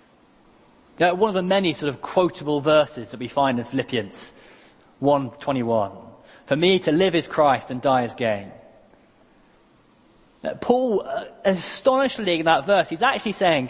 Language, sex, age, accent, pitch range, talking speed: English, male, 20-39, British, 120-185 Hz, 155 wpm